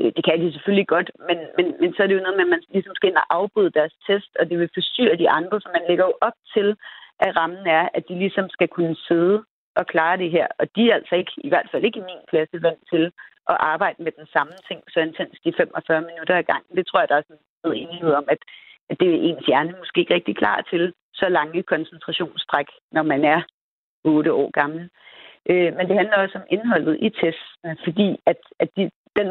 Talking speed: 240 wpm